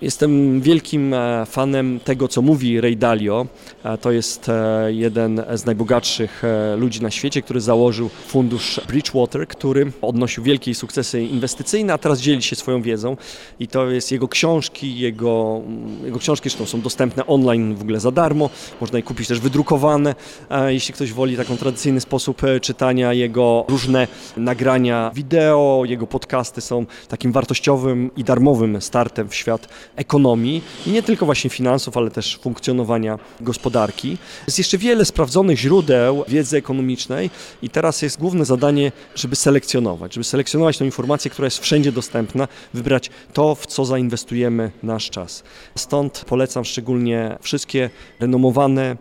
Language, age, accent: Polish, 20-39, native